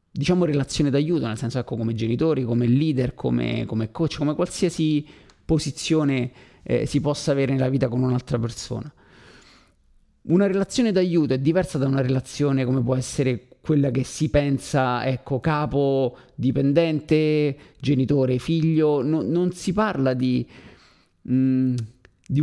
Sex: male